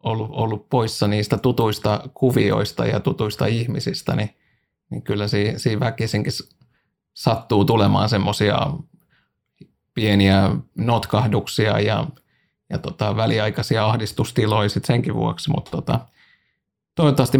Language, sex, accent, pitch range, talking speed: Finnish, male, native, 105-130 Hz, 105 wpm